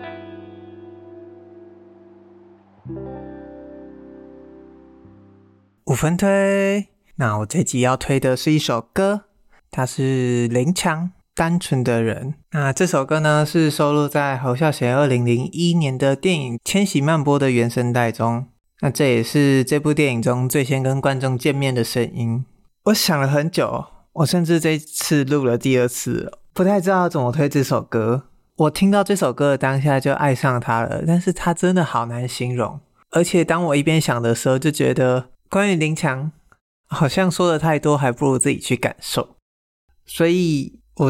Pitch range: 130-165 Hz